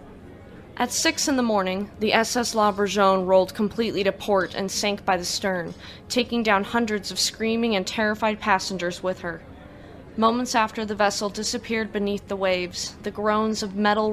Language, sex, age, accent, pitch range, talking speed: English, female, 20-39, American, 190-220 Hz, 170 wpm